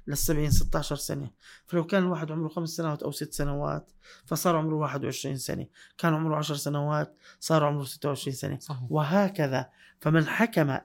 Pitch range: 140-170 Hz